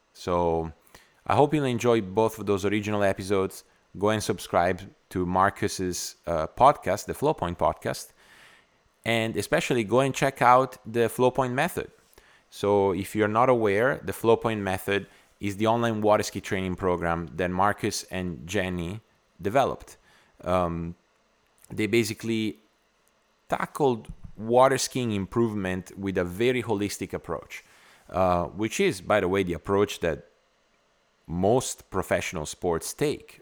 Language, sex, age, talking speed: English, male, 30-49, 135 wpm